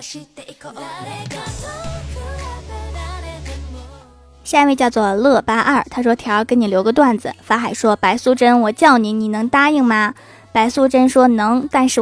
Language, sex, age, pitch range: Chinese, female, 20-39, 220-280 Hz